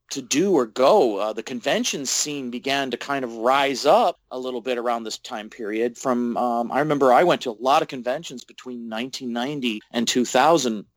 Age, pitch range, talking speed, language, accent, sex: 40-59, 120-145 Hz, 195 wpm, English, American, male